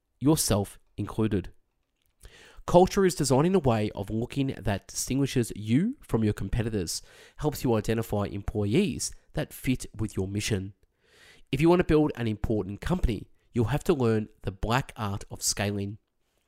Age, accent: 20-39, Australian